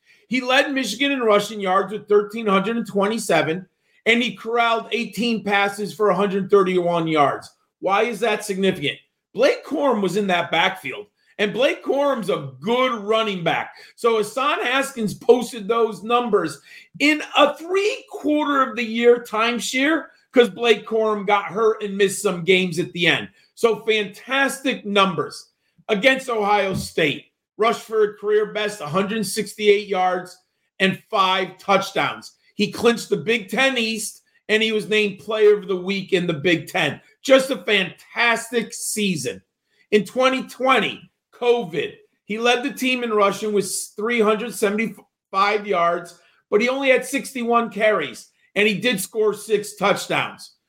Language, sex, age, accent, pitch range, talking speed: English, male, 40-59, American, 200-240 Hz, 145 wpm